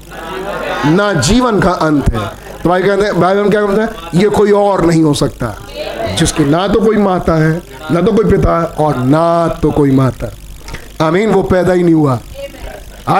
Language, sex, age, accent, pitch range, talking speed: Hindi, male, 50-69, native, 155-205 Hz, 190 wpm